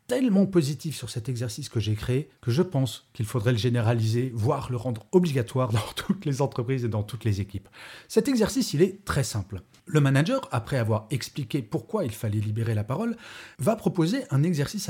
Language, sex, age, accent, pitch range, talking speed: French, male, 40-59, French, 115-165 Hz, 195 wpm